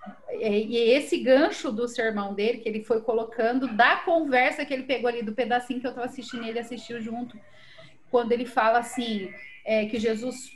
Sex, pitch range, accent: female, 220-260 Hz, Brazilian